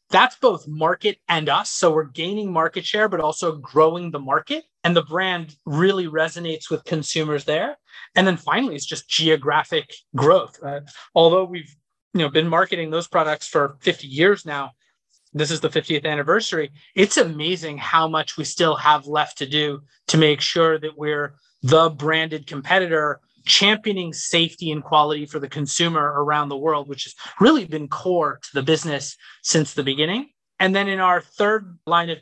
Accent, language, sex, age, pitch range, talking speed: American, English, male, 30-49, 150-170 Hz, 170 wpm